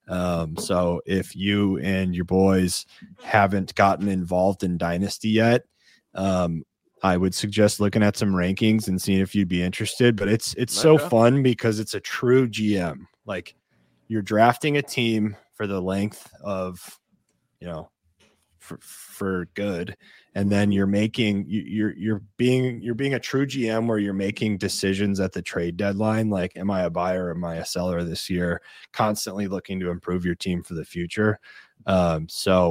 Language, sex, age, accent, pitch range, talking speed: English, male, 20-39, American, 90-105 Hz, 170 wpm